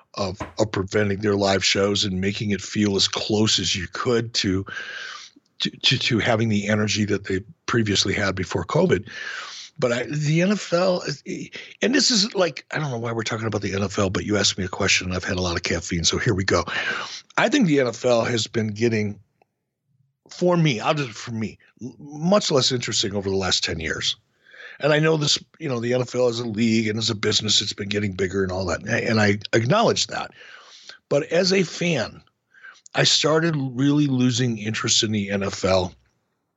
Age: 60-79